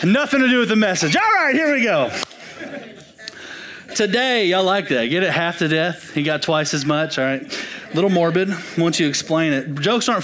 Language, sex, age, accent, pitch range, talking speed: English, male, 30-49, American, 160-195 Hz, 215 wpm